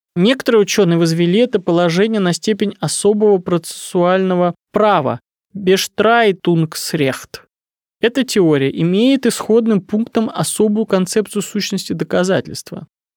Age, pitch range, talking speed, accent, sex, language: 20-39, 170-220 Hz, 90 wpm, native, male, Russian